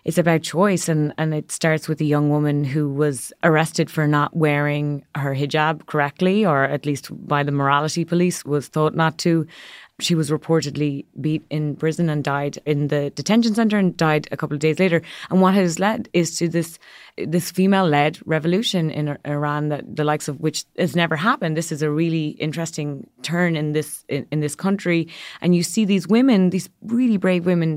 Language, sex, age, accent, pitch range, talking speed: English, female, 30-49, Irish, 150-175 Hz, 195 wpm